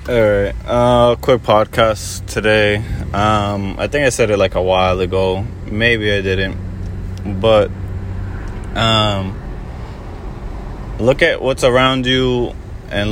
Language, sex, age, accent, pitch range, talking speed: English, male, 20-39, American, 100-115 Hz, 125 wpm